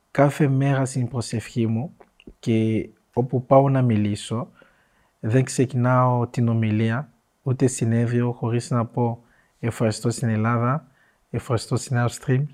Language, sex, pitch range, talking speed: Greek, male, 115-135 Hz, 120 wpm